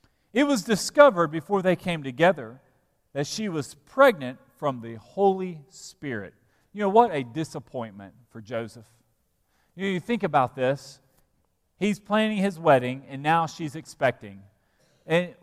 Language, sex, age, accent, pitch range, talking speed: English, male, 40-59, American, 135-190 Hz, 145 wpm